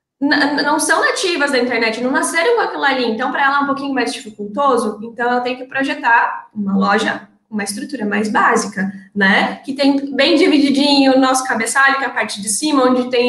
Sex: female